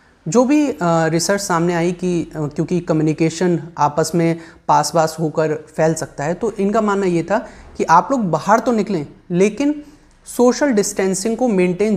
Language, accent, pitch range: Hindi, native, 165-220 Hz